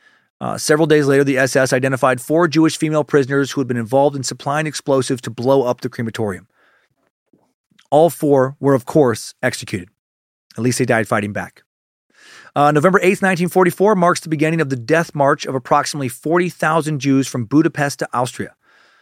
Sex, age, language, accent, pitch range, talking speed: male, 30-49, English, American, 130-170 Hz, 170 wpm